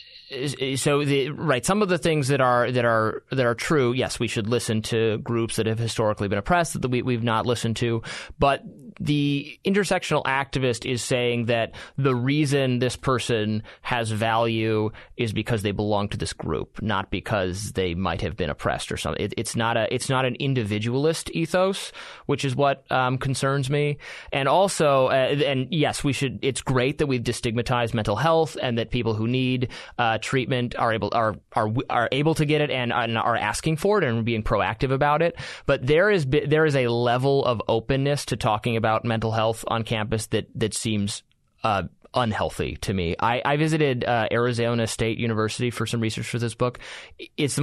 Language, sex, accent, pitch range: English, male, American, 115-140 Hz